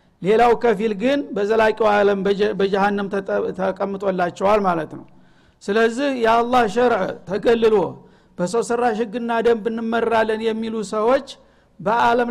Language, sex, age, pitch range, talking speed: Amharic, male, 60-79, 200-235 Hz, 95 wpm